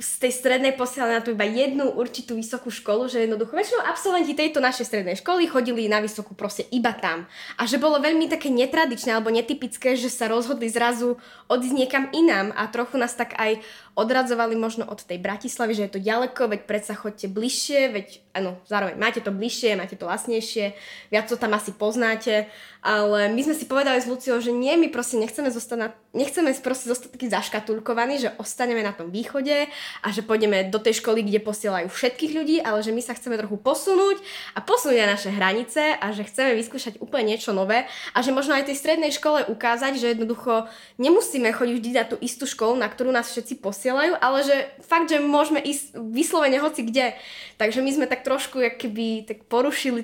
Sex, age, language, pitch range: female, 20-39, Slovak, 220-270 Hz